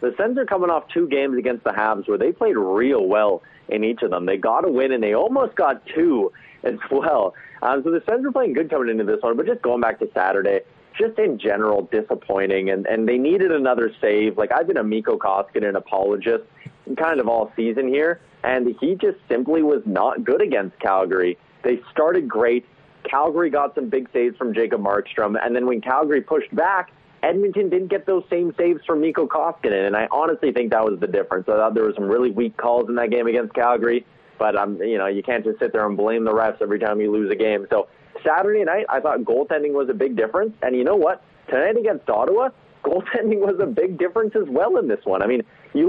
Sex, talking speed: male, 230 wpm